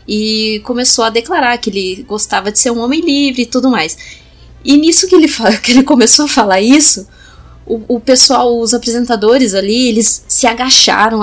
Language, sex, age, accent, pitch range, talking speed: Portuguese, female, 20-39, Brazilian, 210-255 Hz, 175 wpm